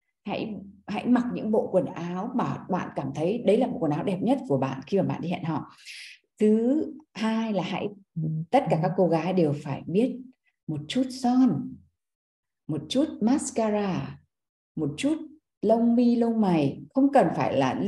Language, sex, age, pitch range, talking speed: Vietnamese, female, 20-39, 185-255 Hz, 180 wpm